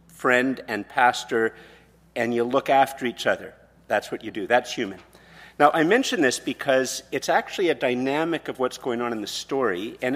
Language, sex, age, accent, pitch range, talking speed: English, male, 50-69, American, 120-150 Hz, 190 wpm